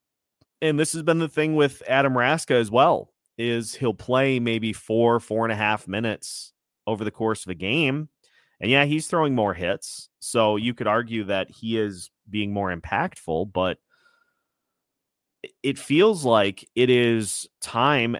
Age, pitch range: 30-49, 105-130 Hz